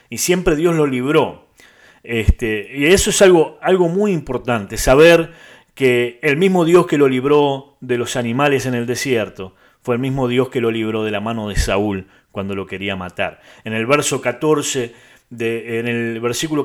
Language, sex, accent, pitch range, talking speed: Spanish, male, Argentinian, 120-145 Hz, 165 wpm